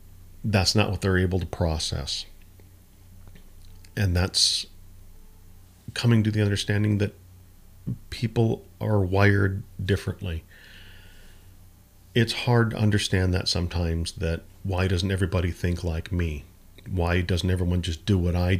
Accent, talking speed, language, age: American, 125 wpm, English, 40-59